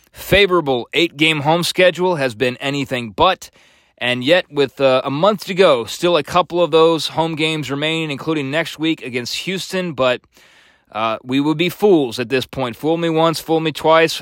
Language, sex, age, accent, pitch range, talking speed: English, male, 20-39, American, 130-165 Hz, 185 wpm